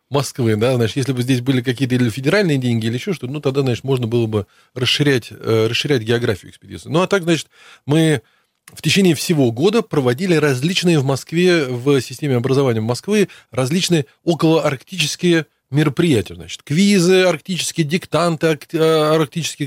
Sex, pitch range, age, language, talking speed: male, 135-175 Hz, 20-39, Russian, 150 wpm